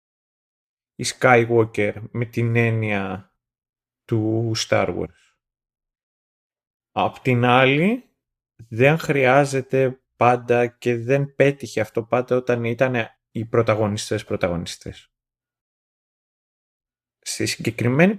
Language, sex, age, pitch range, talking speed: Greek, male, 30-49, 110-130 Hz, 85 wpm